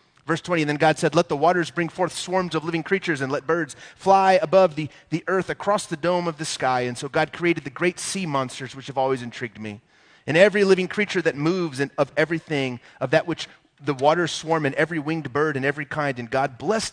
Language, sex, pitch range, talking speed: English, male, 130-170 Hz, 240 wpm